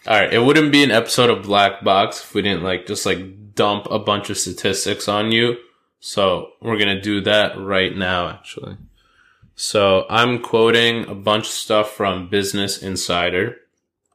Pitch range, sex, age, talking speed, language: 95-115 Hz, male, 20-39, 180 wpm, English